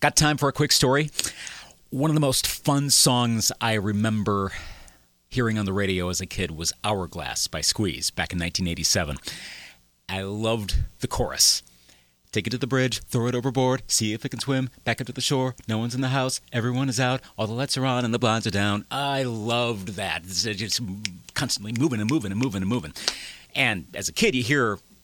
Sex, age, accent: male, 40-59, American